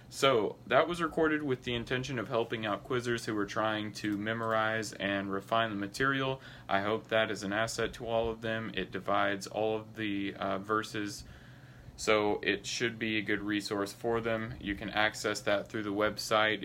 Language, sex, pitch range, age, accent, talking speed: English, male, 100-115 Hz, 20-39, American, 190 wpm